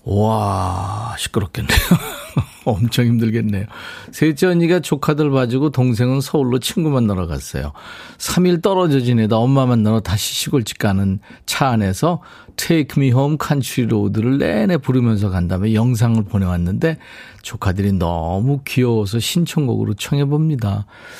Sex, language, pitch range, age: male, Korean, 105-145 Hz, 40-59